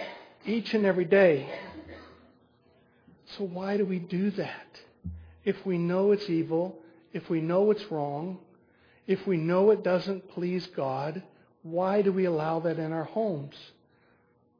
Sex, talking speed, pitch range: male, 145 wpm, 150-190 Hz